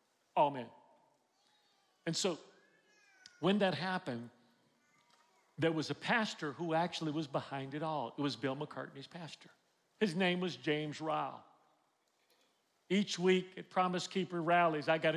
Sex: male